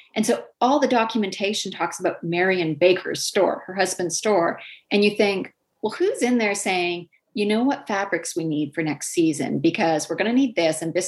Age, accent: 30-49, American